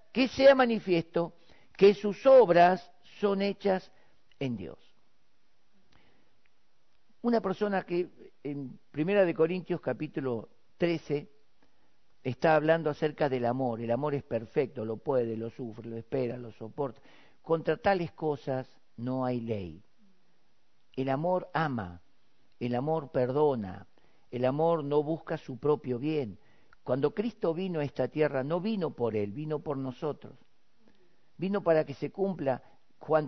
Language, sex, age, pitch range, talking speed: Spanish, male, 50-69, 125-170 Hz, 135 wpm